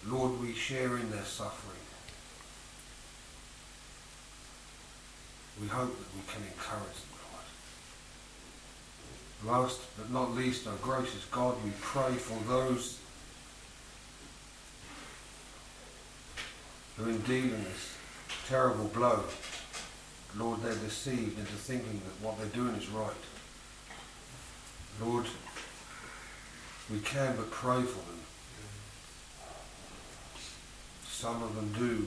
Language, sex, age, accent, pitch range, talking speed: English, male, 60-79, British, 105-125 Hz, 100 wpm